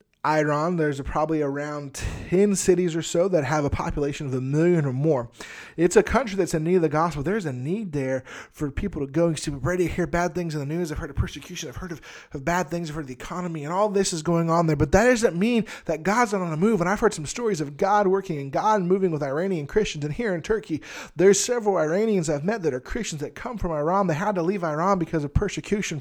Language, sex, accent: English, male, American